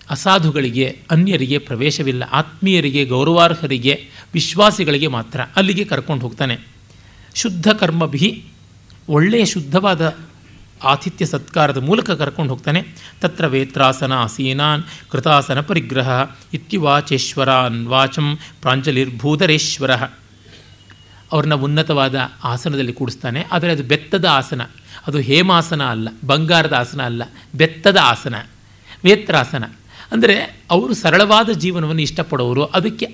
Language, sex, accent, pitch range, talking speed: Kannada, male, native, 130-175 Hz, 90 wpm